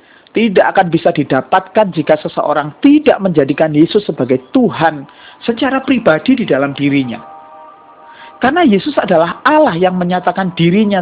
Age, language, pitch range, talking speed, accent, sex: 40-59, Indonesian, 150-235 Hz, 125 wpm, native, male